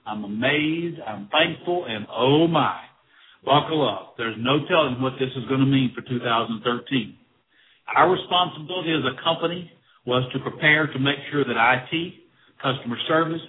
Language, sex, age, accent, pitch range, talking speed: English, male, 60-79, American, 120-150 Hz, 155 wpm